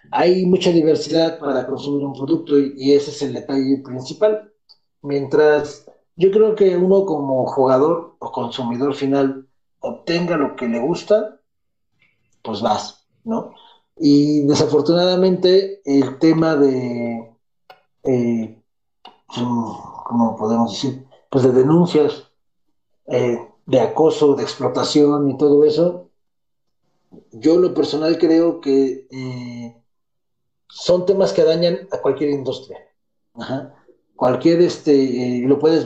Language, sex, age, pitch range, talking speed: Spanish, male, 40-59, 130-165 Hz, 115 wpm